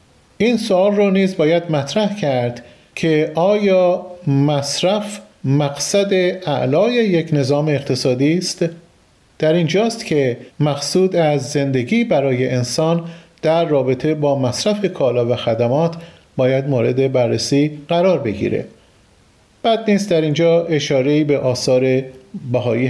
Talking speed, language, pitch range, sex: 115 wpm, Persian, 135-185 Hz, male